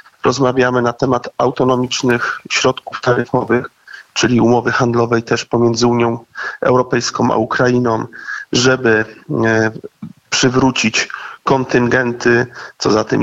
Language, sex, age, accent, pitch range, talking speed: Polish, male, 40-59, native, 120-140 Hz, 95 wpm